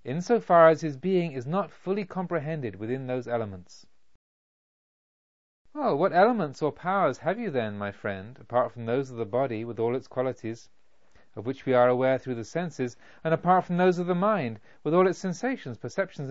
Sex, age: male, 40-59